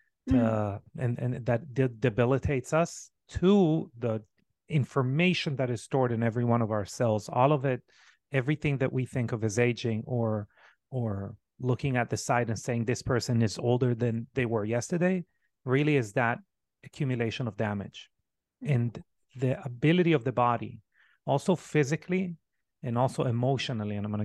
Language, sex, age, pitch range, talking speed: English, male, 30-49, 115-145 Hz, 160 wpm